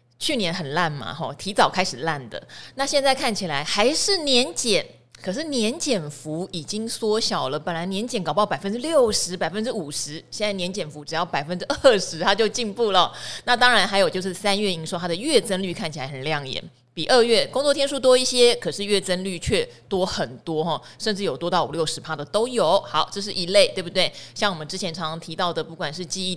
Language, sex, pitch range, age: Chinese, female, 165-230 Hz, 30-49